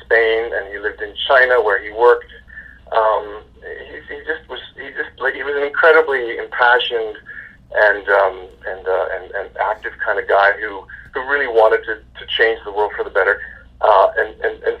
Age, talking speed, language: 40-59, 185 wpm, English